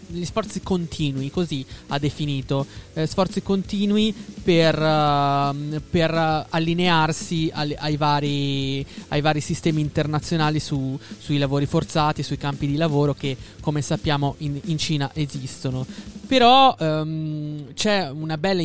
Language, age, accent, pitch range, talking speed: Italian, 20-39, native, 145-200 Hz, 120 wpm